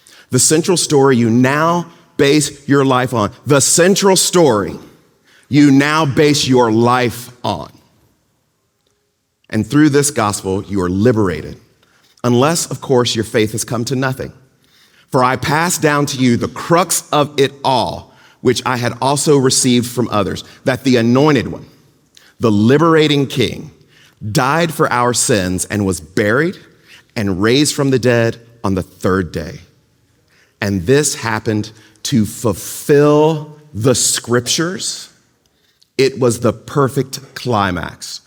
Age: 40-59